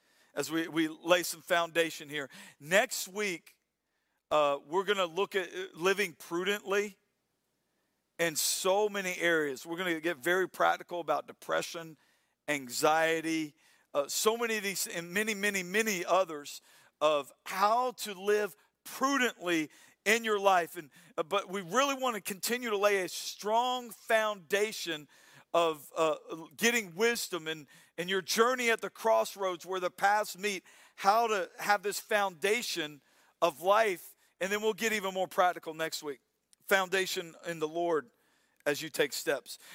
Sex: male